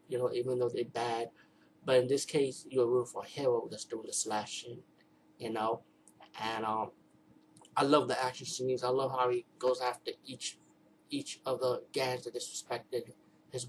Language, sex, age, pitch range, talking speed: English, male, 30-49, 125-135 Hz, 185 wpm